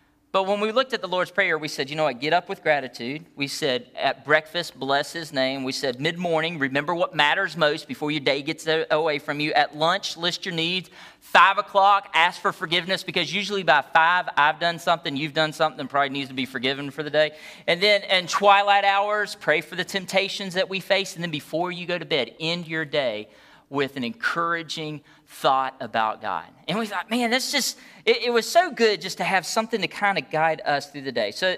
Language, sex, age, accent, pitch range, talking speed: English, male, 40-59, American, 150-210 Hz, 225 wpm